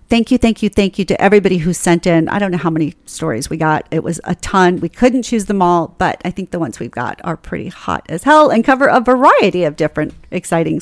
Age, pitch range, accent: 40-59, 185-270 Hz, American